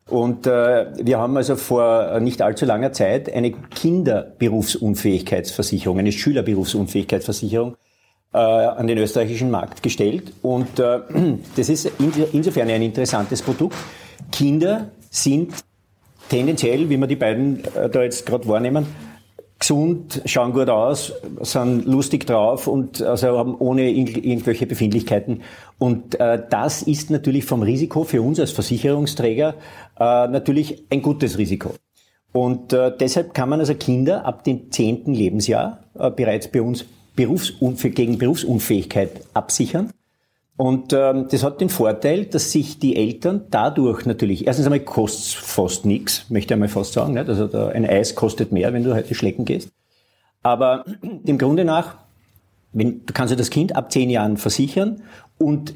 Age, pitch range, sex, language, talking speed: 50-69, 110-140 Hz, male, German, 145 wpm